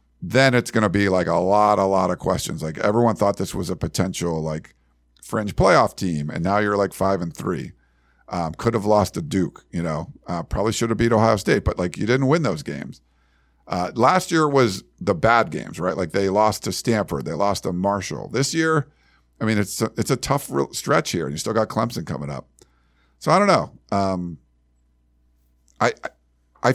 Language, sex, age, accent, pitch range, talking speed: English, male, 50-69, American, 90-130 Hz, 210 wpm